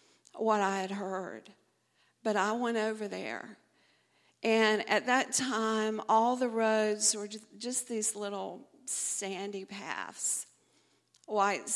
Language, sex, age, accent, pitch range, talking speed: English, female, 50-69, American, 210-240 Hz, 115 wpm